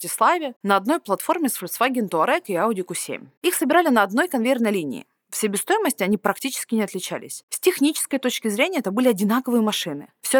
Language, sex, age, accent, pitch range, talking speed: Russian, female, 20-39, native, 185-265 Hz, 180 wpm